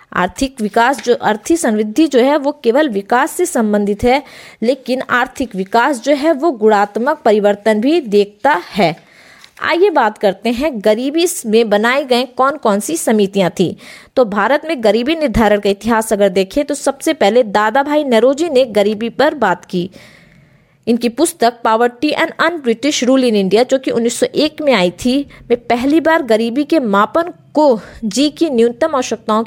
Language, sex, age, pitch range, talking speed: Hindi, female, 20-39, 215-285 Hz, 155 wpm